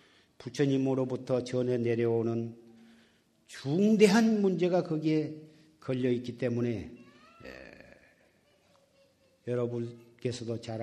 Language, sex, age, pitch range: Korean, male, 50-69, 120-150 Hz